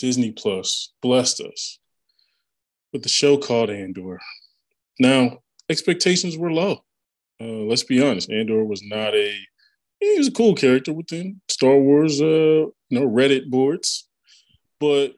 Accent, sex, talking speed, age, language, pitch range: American, male, 130 wpm, 20-39, English, 110-155 Hz